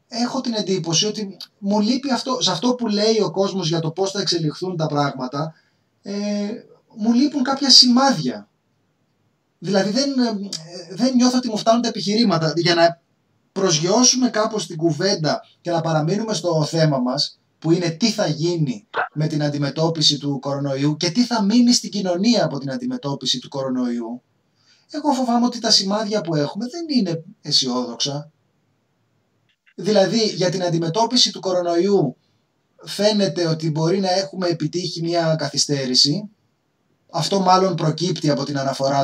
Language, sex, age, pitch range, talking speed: Greek, male, 20-39, 150-215 Hz, 150 wpm